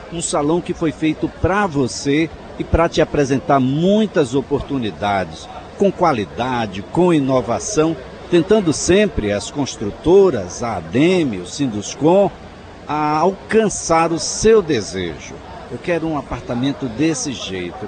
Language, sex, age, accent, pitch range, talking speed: Portuguese, male, 60-79, Brazilian, 125-170 Hz, 120 wpm